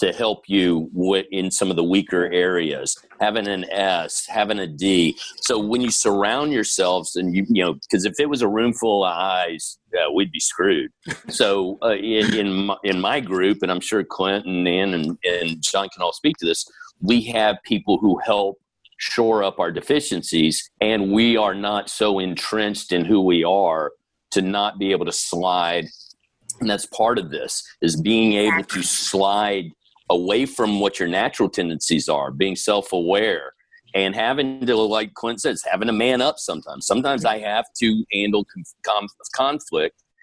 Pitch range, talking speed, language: 90-115 Hz, 175 wpm, English